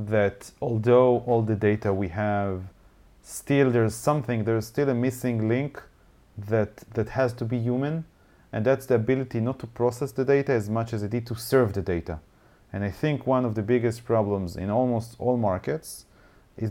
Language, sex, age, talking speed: English, male, 30-49, 185 wpm